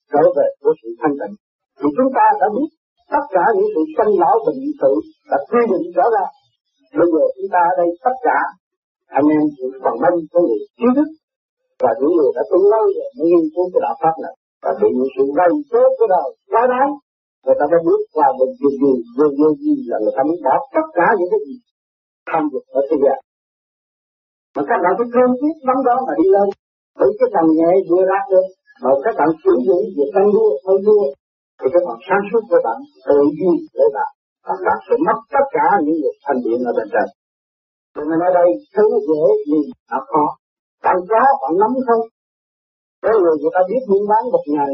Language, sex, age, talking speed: Vietnamese, male, 50-69, 160 wpm